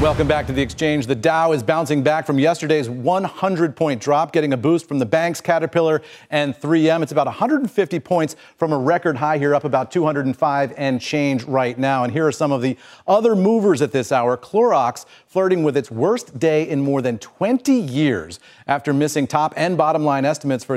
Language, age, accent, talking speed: English, 40-59, American, 200 wpm